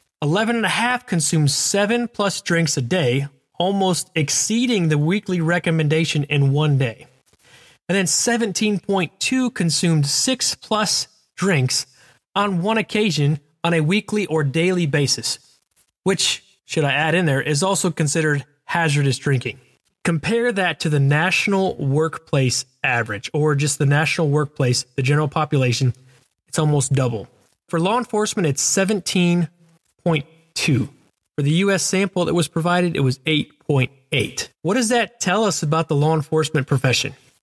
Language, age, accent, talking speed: English, 20-39, American, 135 wpm